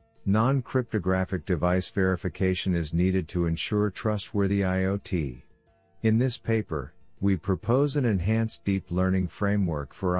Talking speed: 120 wpm